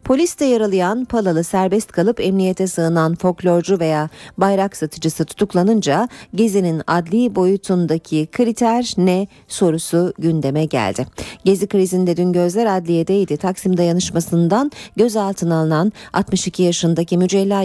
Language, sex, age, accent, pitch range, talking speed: Turkish, female, 40-59, native, 160-205 Hz, 110 wpm